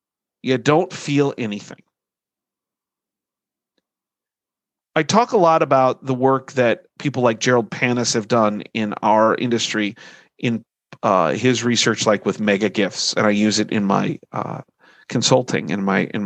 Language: English